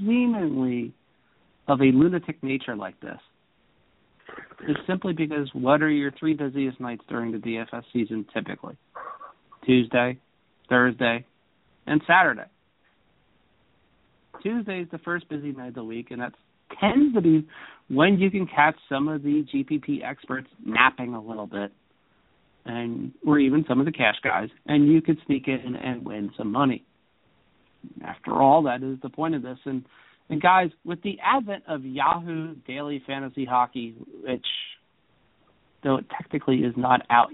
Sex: male